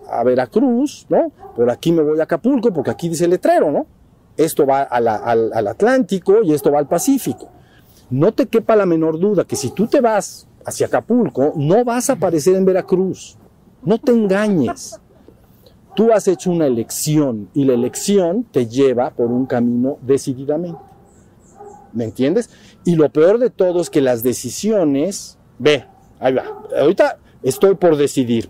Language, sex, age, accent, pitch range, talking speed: Spanish, male, 50-69, Mexican, 130-200 Hz, 170 wpm